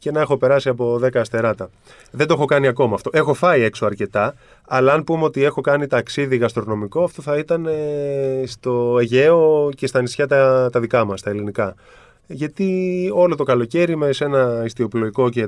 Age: 20-39